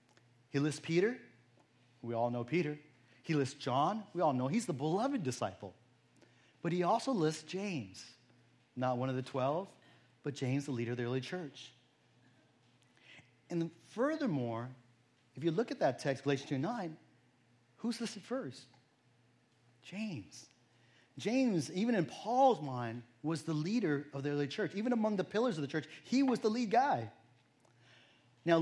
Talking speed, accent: 160 wpm, American